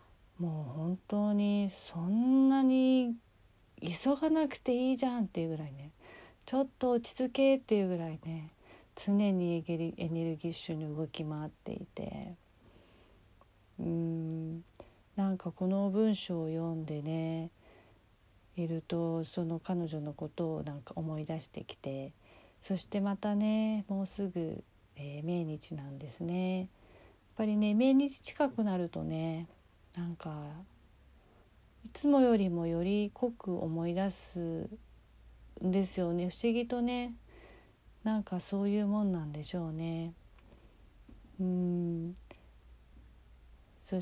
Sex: female